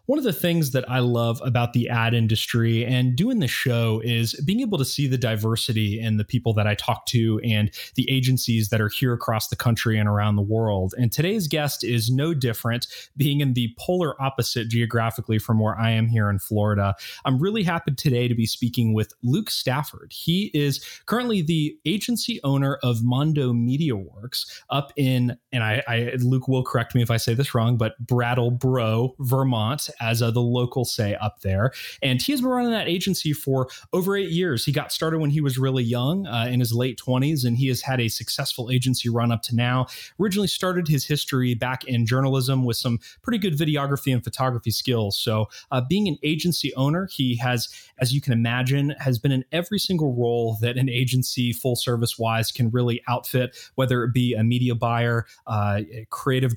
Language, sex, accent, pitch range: English, male, American, 115-140 Hz